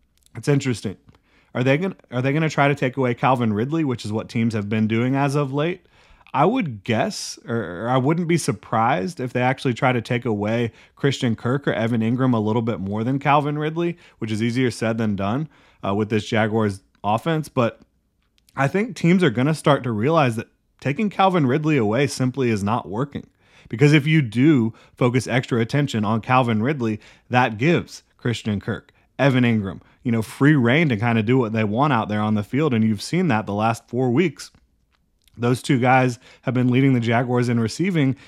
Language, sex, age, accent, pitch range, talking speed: English, male, 30-49, American, 110-135 Hz, 200 wpm